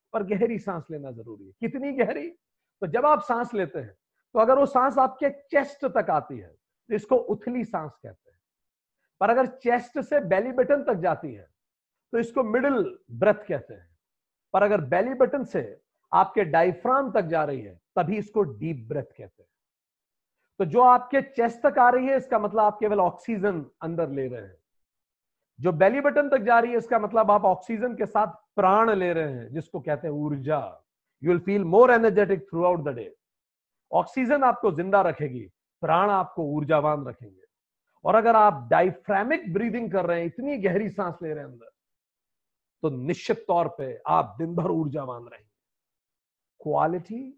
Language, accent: Hindi, native